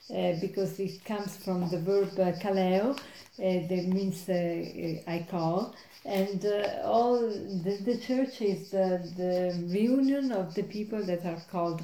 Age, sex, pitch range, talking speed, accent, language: 40-59, female, 180-205 Hz, 155 wpm, Italian, English